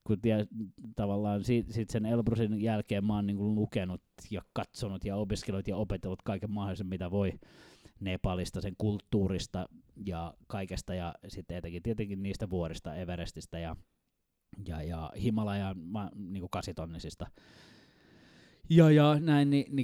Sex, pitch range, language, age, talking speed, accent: male, 95-115 Hz, Finnish, 20-39, 120 wpm, native